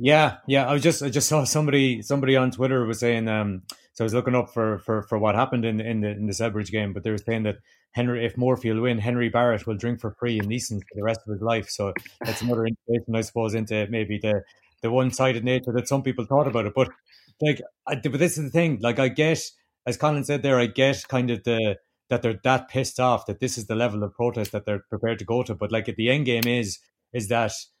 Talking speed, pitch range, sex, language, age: 265 wpm, 110-130 Hz, male, English, 30-49